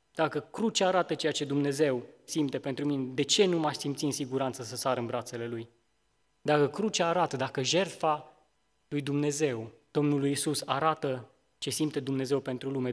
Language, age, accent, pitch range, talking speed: Romanian, 20-39, native, 130-155 Hz, 165 wpm